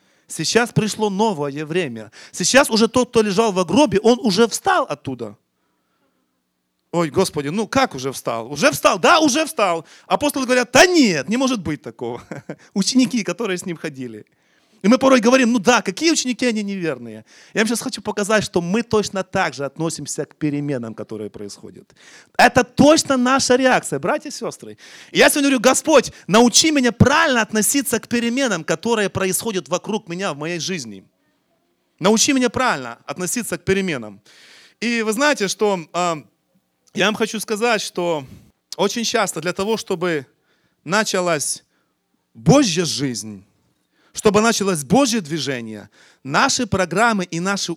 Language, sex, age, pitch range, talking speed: Russian, male, 30-49, 160-235 Hz, 150 wpm